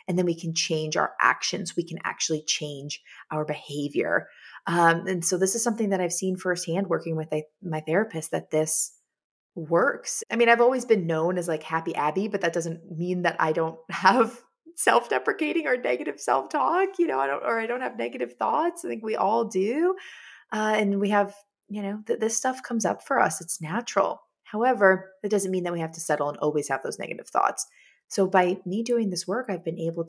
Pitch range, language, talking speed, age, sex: 160-210 Hz, English, 215 wpm, 20-39, female